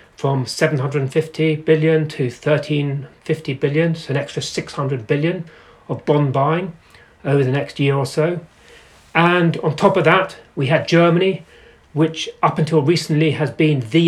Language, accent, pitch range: English, British, 140-165 Hz